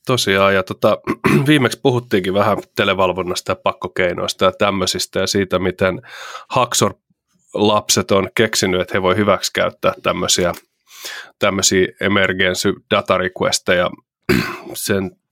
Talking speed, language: 105 wpm, Finnish